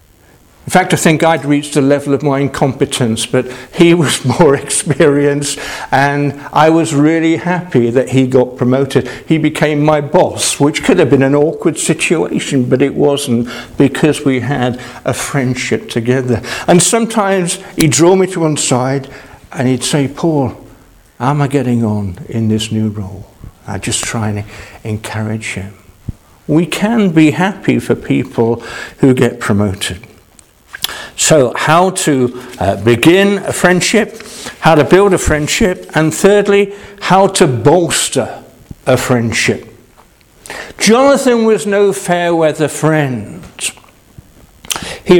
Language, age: English, 60-79